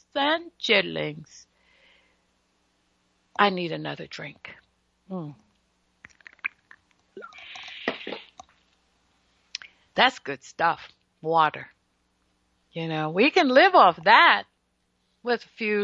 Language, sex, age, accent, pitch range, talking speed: English, female, 60-79, American, 190-280 Hz, 80 wpm